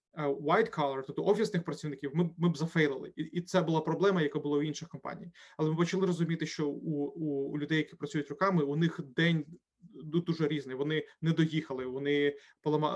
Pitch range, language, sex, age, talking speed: 145-170 Hz, Ukrainian, male, 30-49, 190 wpm